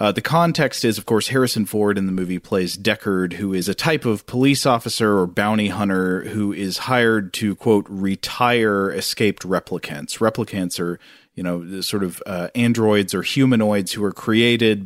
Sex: male